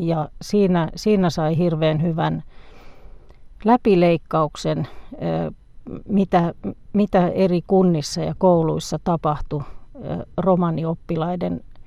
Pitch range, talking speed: 115-185 Hz, 75 wpm